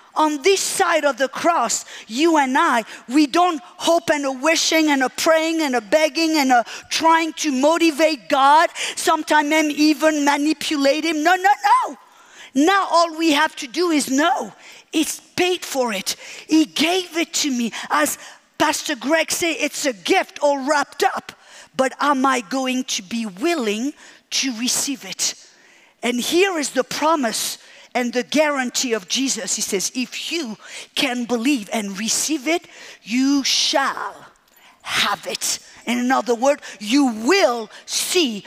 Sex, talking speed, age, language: female, 160 wpm, 50-69, English